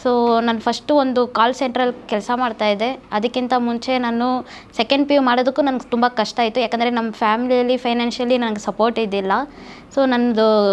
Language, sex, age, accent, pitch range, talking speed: Kannada, female, 20-39, native, 225-270 Hz, 155 wpm